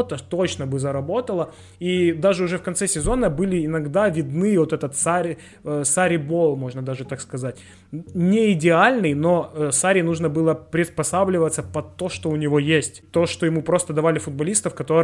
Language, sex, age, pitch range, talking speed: Ukrainian, male, 20-39, 150-180 Hz, 150 wpm